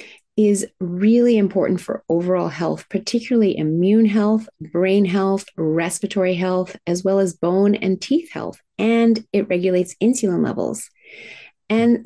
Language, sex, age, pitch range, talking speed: English, female, 30-49, 180-225 Hz, 130 wpm